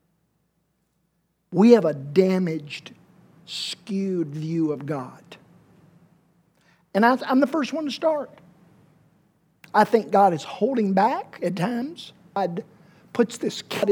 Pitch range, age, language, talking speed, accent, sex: 180-235 Hz, 50-69, English, 120 wpm, American, male